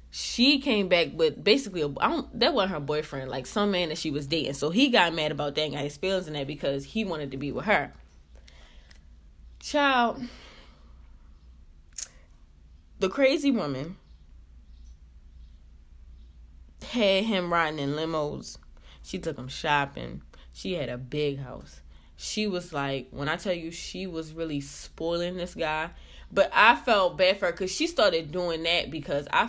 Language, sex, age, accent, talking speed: English, female, 10-29, American, 165 wpm